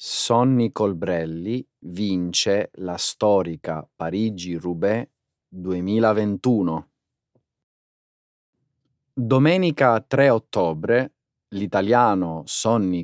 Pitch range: 95-135 Hz